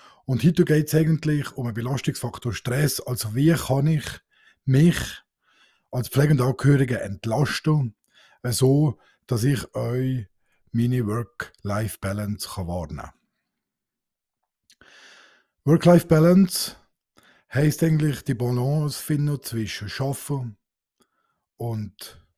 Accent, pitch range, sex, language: Austrian, 115-145 Hz, male, German